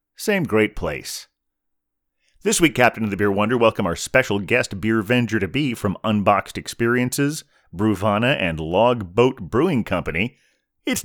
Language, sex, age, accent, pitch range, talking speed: English, male, 30-49, American, 95-125 Hz, 135 wpm